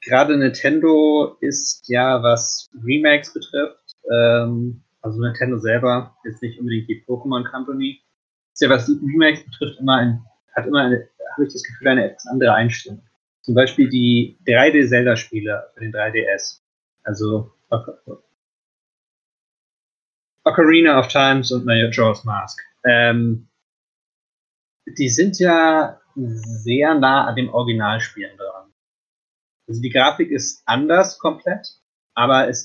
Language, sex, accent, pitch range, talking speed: German, male, German, 115-140 Hz, 120 wpm